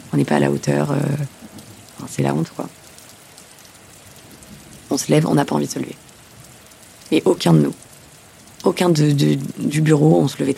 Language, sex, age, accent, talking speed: French, female, 30-49, French, 195 wpm